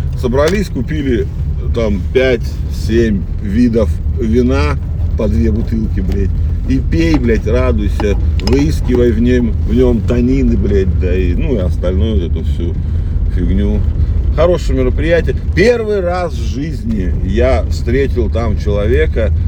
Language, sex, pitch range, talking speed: Russian, male, 80-100 Hz, 125 wpm